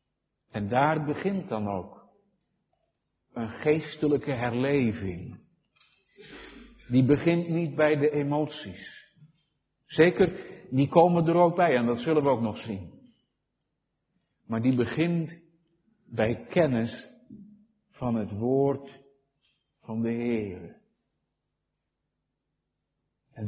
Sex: male